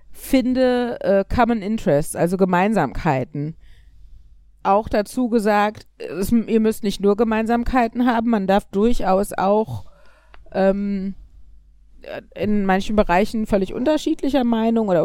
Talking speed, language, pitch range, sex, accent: 105 wpm, German, 185-225 Hz, female, German